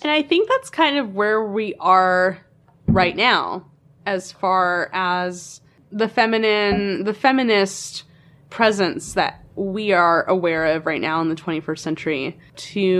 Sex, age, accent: female, 20-39, American